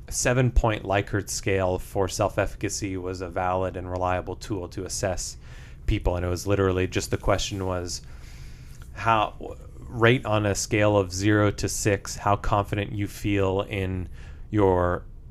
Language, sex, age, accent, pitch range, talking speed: English, male, 30-49, American, 90-105 Hz, 150 wpm